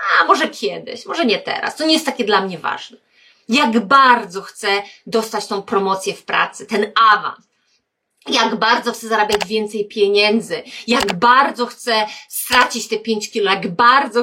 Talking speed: 160 wpm